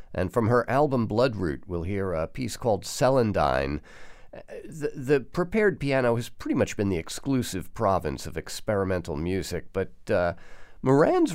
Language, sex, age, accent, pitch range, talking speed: English, male, 50-69, American, 90-135 Hz, 150 wpm